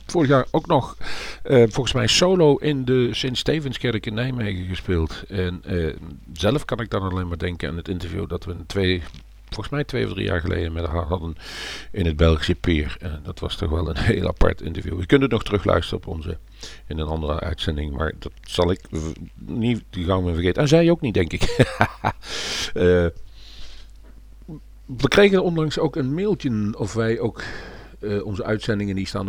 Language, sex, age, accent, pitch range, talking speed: Dutch, male, 50-69, Dutch, 90-115 Hz, 195 wpm